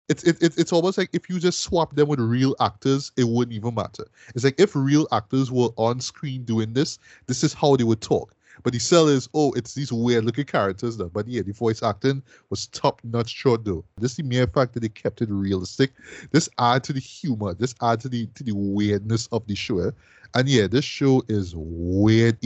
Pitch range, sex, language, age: 105-135 Hz, male, English, 20-39